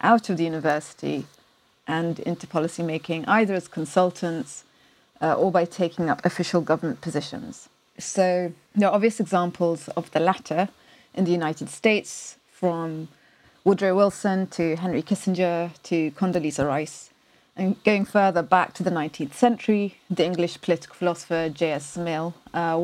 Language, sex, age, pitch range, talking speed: English, female, 30-49, 165-195 Hz, 140 wpm